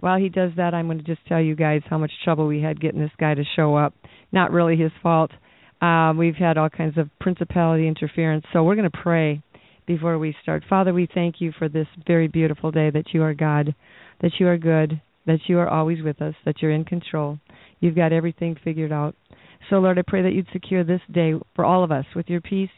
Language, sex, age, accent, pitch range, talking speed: English, female, 40-59, American, 160-175 Hz, 235 wpm